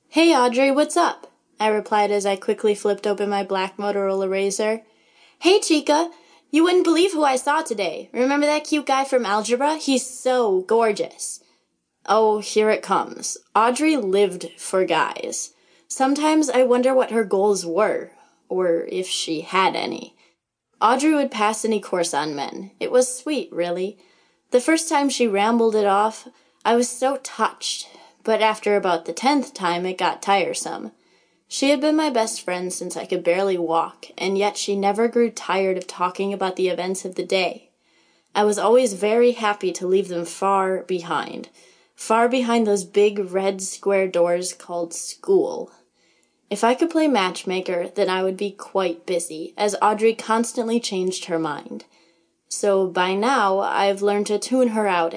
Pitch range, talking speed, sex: 190-255 Hz, 165 wpm, female